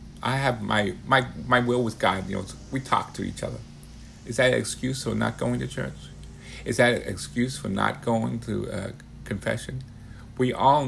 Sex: male